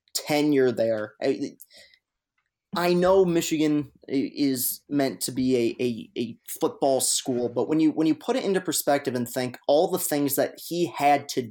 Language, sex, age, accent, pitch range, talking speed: English, male, 30-49, American, 125-150 Hz, 170 wpm